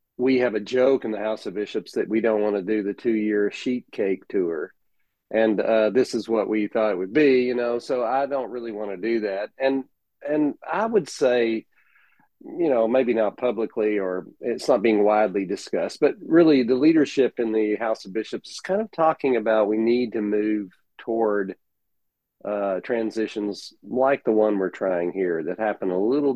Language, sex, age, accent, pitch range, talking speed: English, male, 40-59, American, 105-120 Hz, 200 wpm